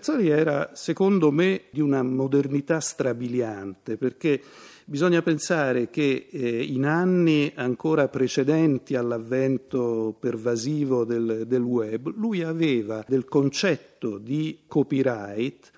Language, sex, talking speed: Italian, male, 105 wpm